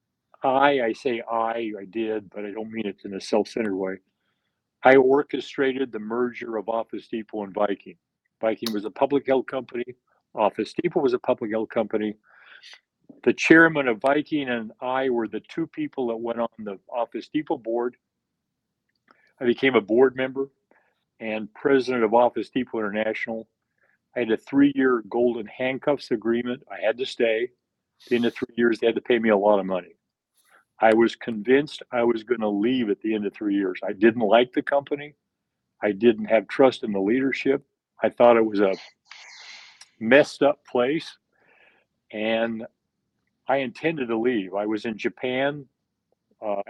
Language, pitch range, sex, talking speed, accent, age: English, 110-130 Hz, male, 170 wpm, American, 50-69